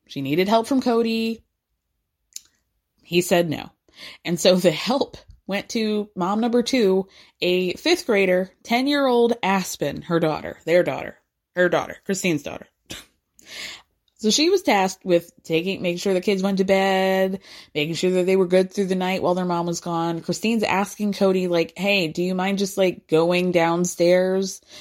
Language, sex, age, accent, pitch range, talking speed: English, female, 20-39, American, 170-230 Hz, 165 wpm